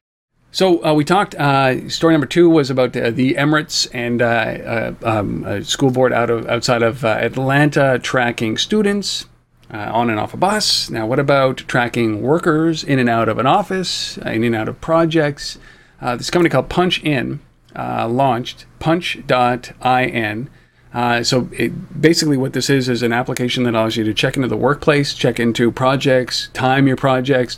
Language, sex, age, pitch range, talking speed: English, male, 40-59, 115-140 Hz, 185 wpm